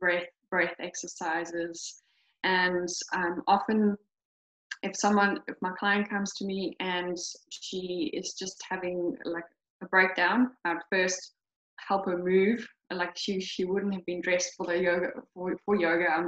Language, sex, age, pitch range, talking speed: English, female, 10-29, 175-205 Hz, 150 wpm